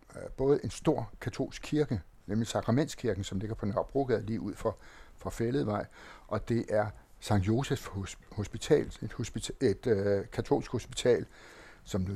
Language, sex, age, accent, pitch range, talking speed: Danish, male, 60-79, native, 100-125 Hz, 135 wpm